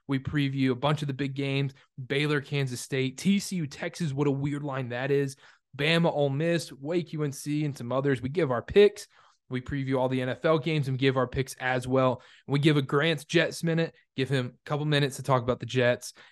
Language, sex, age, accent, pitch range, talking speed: English, male, 20-39, American, 130-155 Hz, 215 wpm